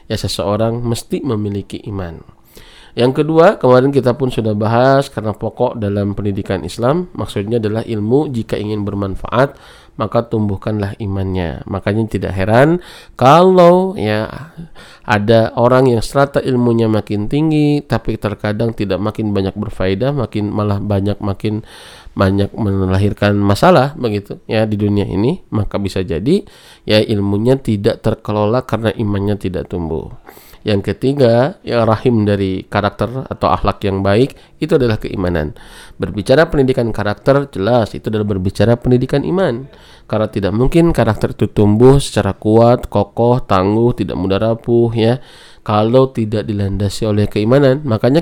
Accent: native